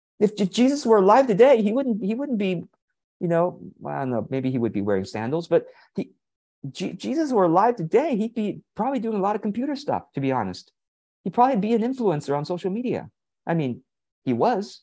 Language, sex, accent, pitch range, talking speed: English, male, American, 160-255 Hz, 210 wpm